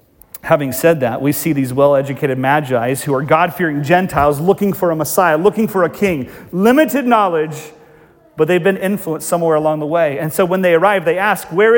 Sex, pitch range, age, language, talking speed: male, 150-185 Hz, 40-59, English, 195 wpm